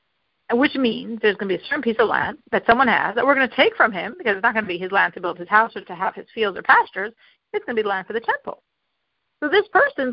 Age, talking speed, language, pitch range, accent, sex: 50-69, 310 wpm, English, 230-360 Hz, American, female